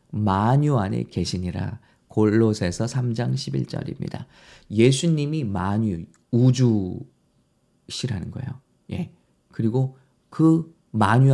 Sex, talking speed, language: male, 75 wpm, English